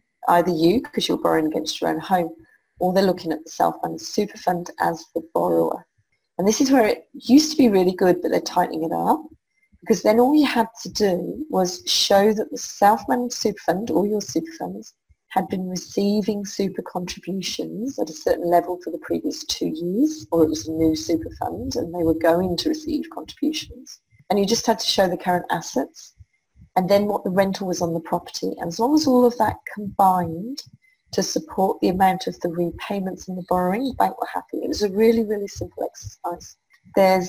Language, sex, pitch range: English, female, 175-235 Hz